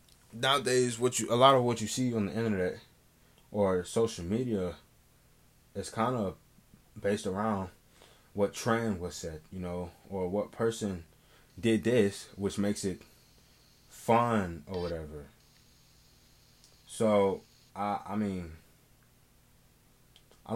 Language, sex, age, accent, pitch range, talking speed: English, male, 20-39, American, 90-110 Hz, 125 wpm